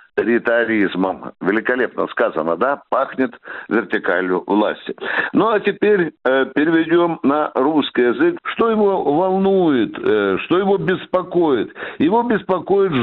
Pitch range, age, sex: 130-180 Hz, 60-79, male